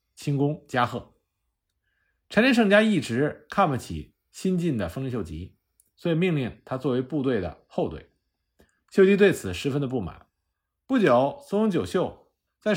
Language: Chinese